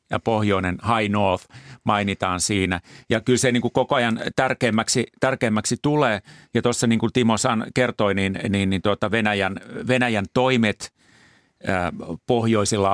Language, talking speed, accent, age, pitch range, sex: Finnish, 145 wpm, native, 40-59, 95-115 Hz, male